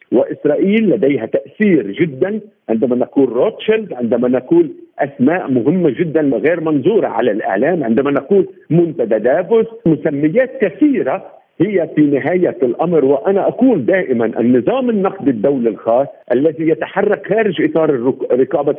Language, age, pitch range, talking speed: Arabic, 50-69, 140-200 Hz, 120 wpm